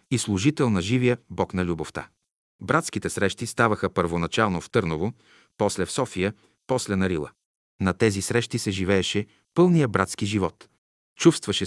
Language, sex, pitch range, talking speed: Bulgarian, male, 90-120 Hz, 145 wpm